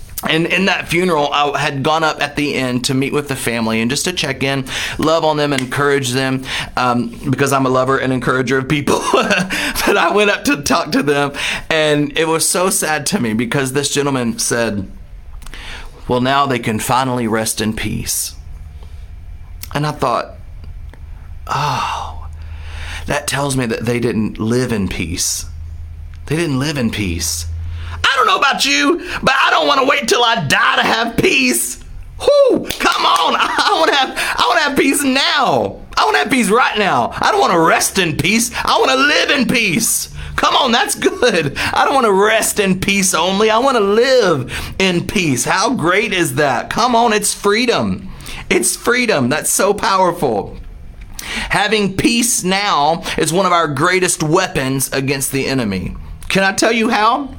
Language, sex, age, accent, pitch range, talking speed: English, male, 30-49, American, 110-180 Hz, 180 wpm